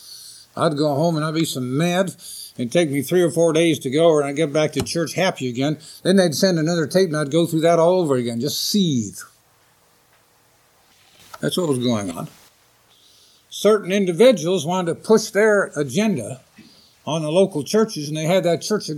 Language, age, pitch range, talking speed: English, 60-79, 135-185 Hz, 200 wpm